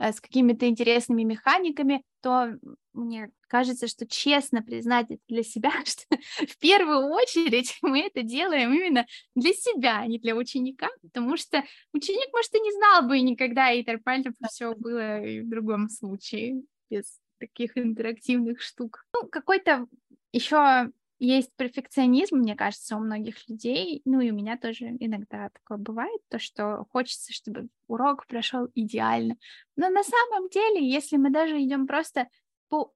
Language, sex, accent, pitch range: Russian, female, native, 235-305 Hz